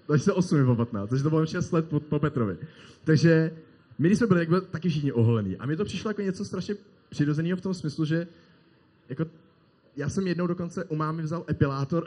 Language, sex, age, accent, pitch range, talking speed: Czech, male, 20-39, native, 130-165 Hz, 205 wpm